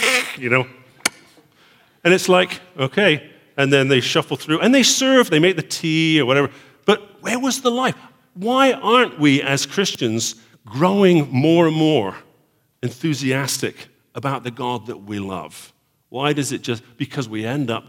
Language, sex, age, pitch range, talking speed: English, male, 50-69, 105-150 Hz, 165 wpm